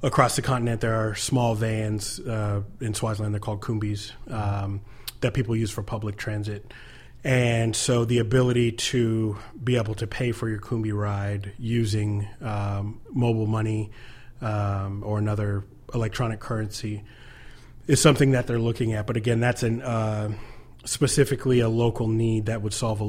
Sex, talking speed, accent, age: male, 160 wpm, American, 30-49